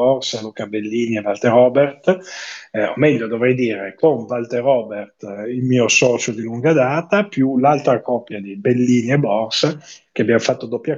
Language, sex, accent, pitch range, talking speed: Italian, male, native, 105-135 Hz, 165 wpm